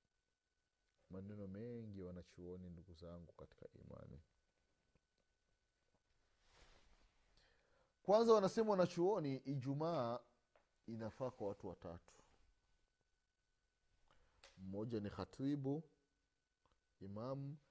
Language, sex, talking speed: Swahili, male, 60 wpm